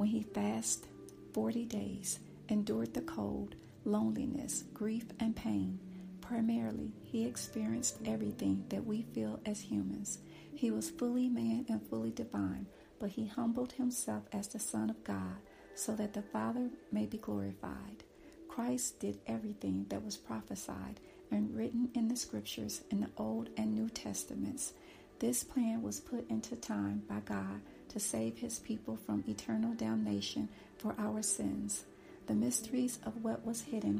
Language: English